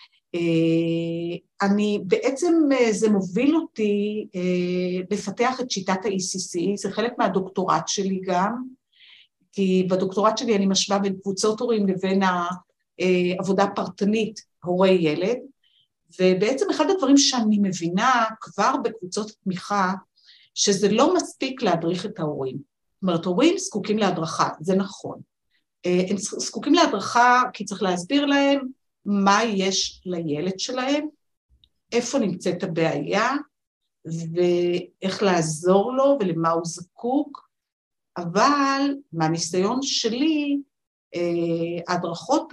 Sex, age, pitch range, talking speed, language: female, 50-69, 185-255 Hz, 105 wpm, Hebrew